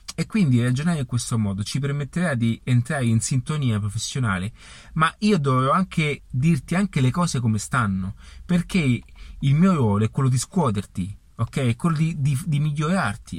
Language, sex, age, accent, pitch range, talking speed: Italian, male, 30-49, native, 110-165 Hz, 170 wpm